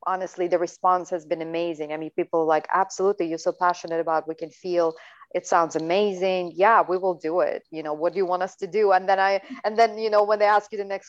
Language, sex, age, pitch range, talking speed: English, female, 30-49, 170-230 Hz, 265 wpm